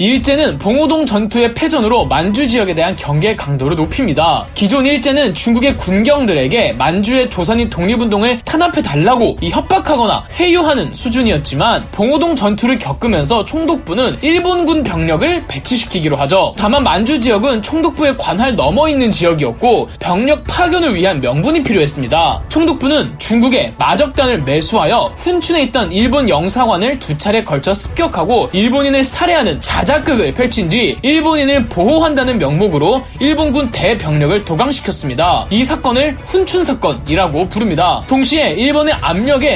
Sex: male